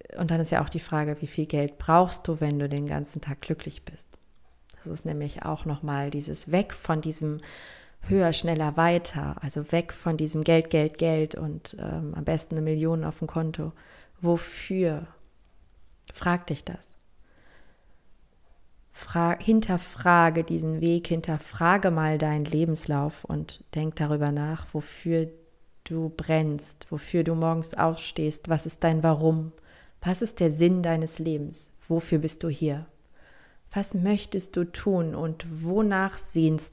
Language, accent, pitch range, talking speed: German, German, 155-170 Hz, 150 wpm